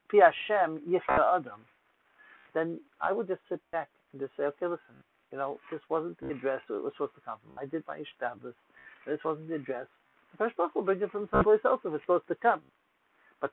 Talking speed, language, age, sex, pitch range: 210 wpm, English, 60-79, male, 150-230 Hz